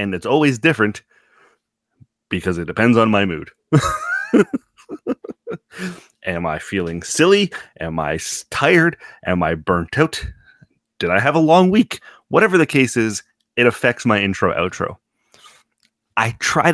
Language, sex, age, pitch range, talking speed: English, male, 30-49, 95-125 Hz, 135 wpm